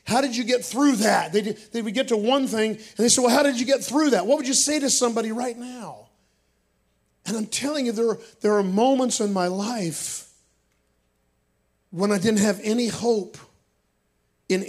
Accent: American